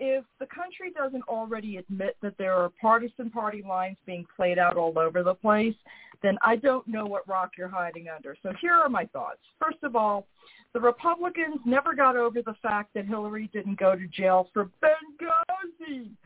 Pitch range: 195-270 Hz